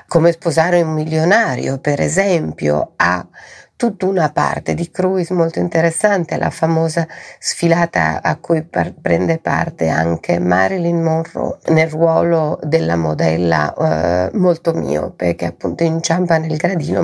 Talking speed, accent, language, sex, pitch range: 130 wpm, native, Italian, female, 145-180 Hz